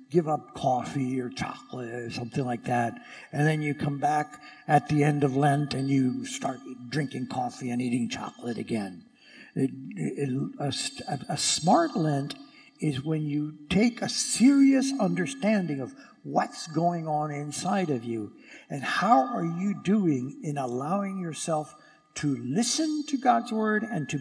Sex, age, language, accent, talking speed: male, 60-79, English, American, 150 wpm